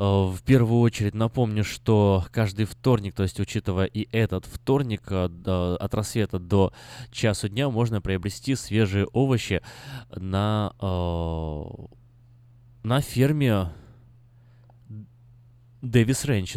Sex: male